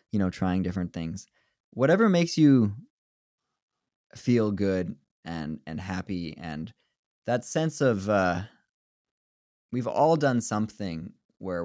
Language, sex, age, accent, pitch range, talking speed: English, male, 20-39, American, 90-120 Hz, 120 wpm